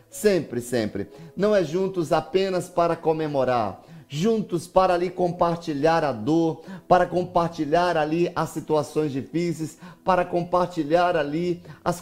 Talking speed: 120 wpm